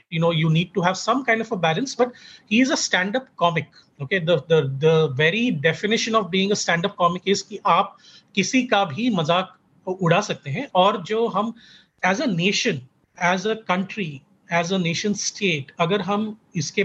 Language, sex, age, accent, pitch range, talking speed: Hindi, male, 30-49, native, 165-205 Hz, 200 wpm